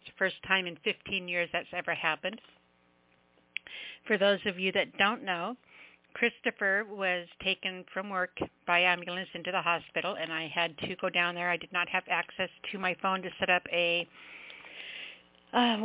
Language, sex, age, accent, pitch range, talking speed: English, female, 60-79, American, 180-215 Hz, 180 wpm